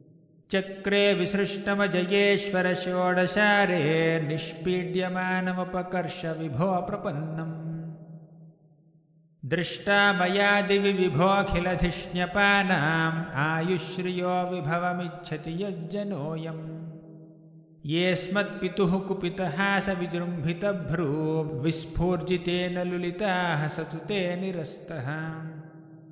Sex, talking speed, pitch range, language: male, 35 wpm, 160-185 Hz, English